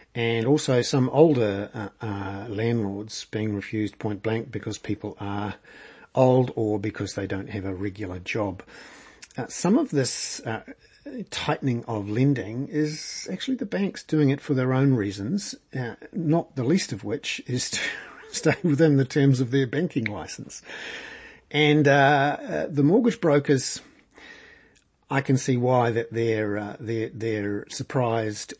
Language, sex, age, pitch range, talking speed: English, male, 50-69, 105-135 Hz, 150 wpm